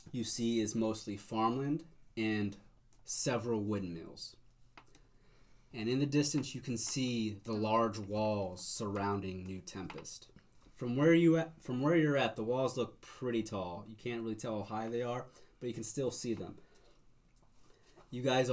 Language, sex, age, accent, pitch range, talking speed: English, male, 20-39, American, 100-120 Hz, 160 wpm